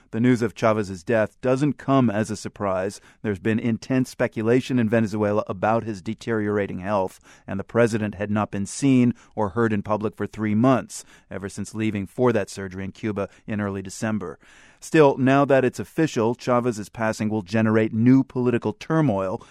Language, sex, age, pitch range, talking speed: English, male, 30-49, 105-125 Hz, 175 wpm